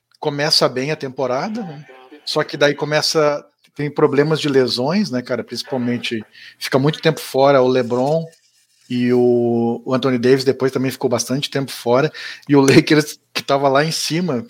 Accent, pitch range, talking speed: Brazilian, 130-160 Hz, 165 wpm